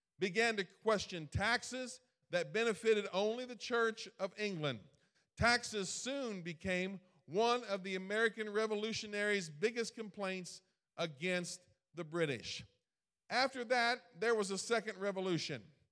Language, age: English, 50-69